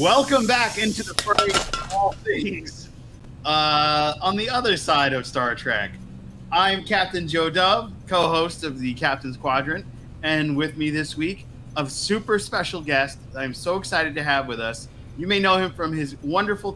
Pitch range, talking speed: 125-160 Hz, 170 wpm